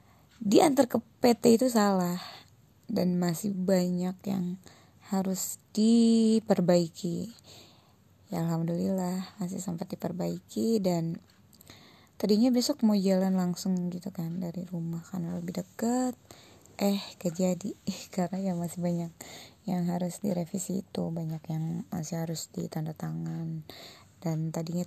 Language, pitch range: Indonesian, 170-200 Hz